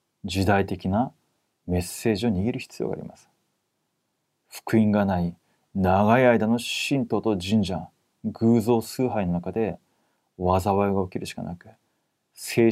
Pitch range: 100-125 Hz